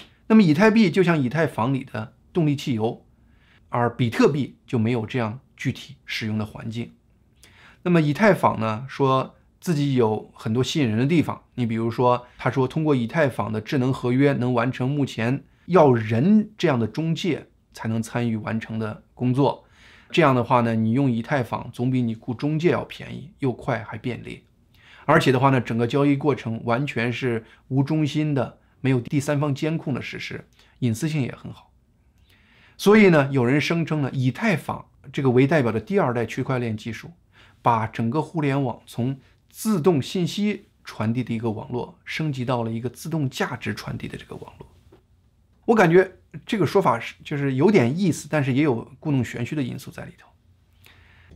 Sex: male